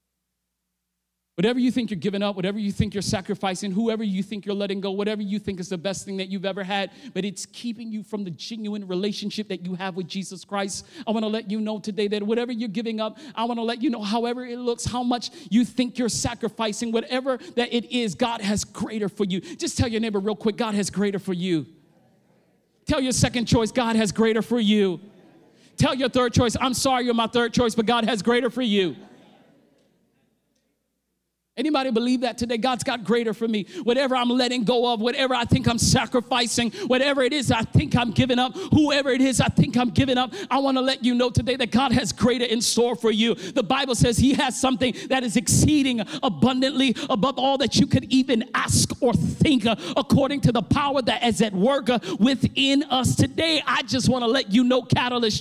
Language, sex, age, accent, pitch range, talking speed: English, male, 40-59, American, 210-255 Hz, 220 wpm